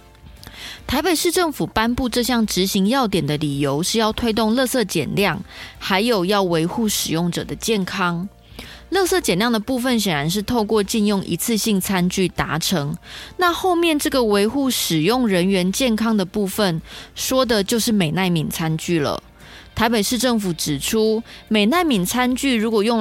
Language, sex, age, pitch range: Chinese, female, 20-39, 180-240 Hz